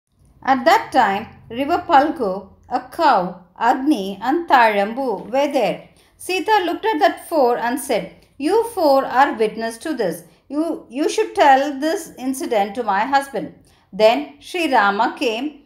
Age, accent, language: 50-69, native, Tamil